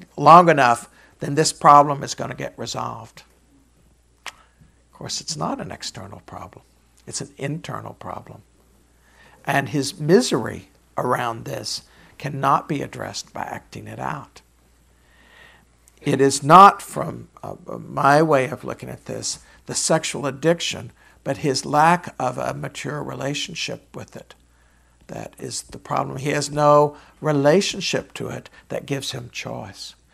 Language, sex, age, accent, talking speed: English, male, 60-79, American, 140 wpm